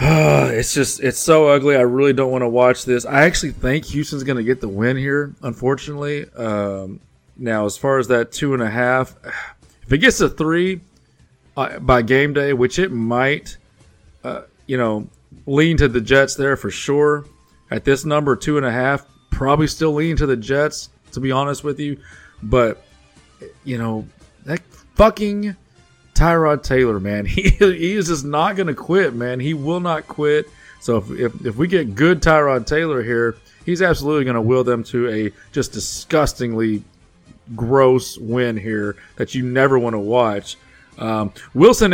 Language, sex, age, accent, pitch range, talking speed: English, male, 30-49, American, 115-150 Hz, 180 wpm